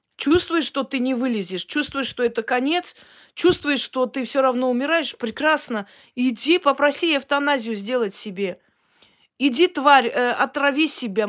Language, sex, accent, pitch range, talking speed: Russian, female, native, 225-285 Hz, 140 wpm